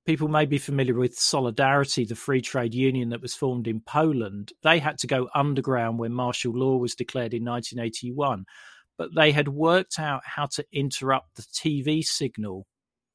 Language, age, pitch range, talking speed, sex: English, 40-59, 125-150 Hz, 175 wpm, male